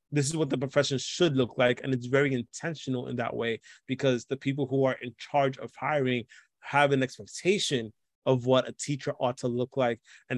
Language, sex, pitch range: English, male, 125-140 Hz